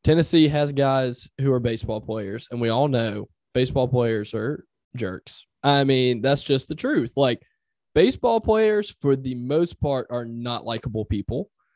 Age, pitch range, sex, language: 20-39, 140-220 Hz, male, English